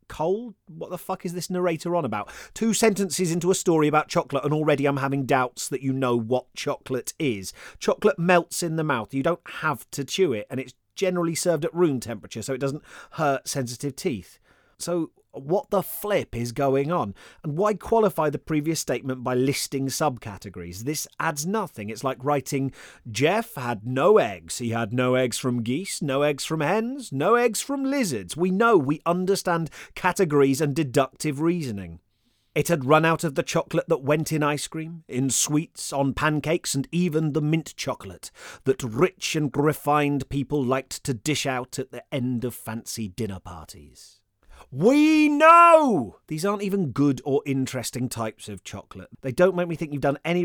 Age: 30-49